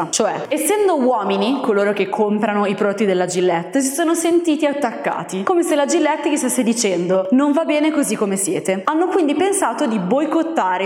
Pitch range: 195-275 Hz